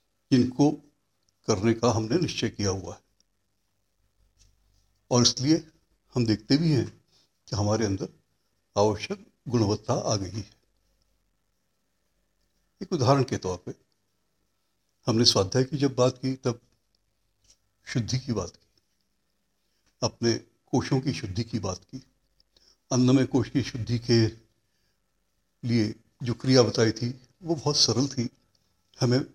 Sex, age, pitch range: male, 60-79, 100-135 Hz